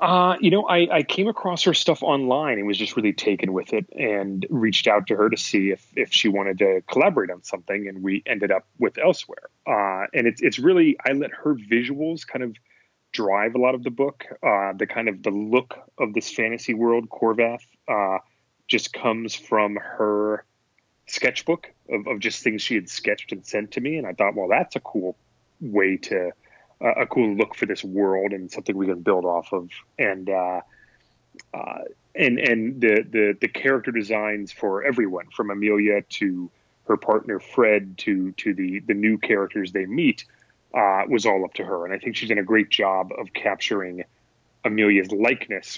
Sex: male